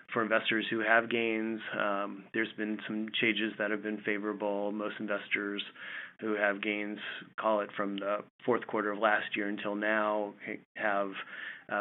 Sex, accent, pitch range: male, American, 105-115 Hz